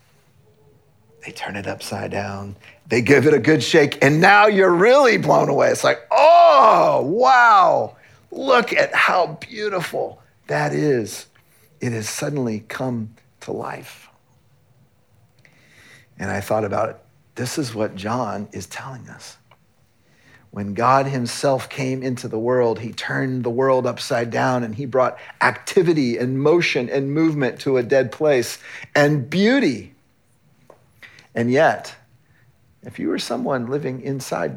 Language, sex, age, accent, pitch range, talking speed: English, male, 40-59, American, 115-155 Hz, 140 wpm